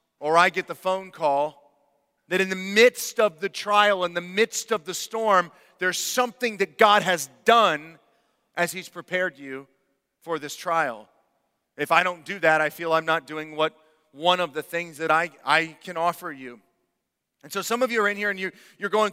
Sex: male